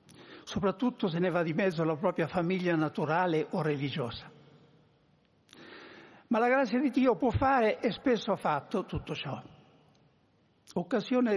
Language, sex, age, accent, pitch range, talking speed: Italian, male, 60-79, native, 175-230 Hz, 135 wpm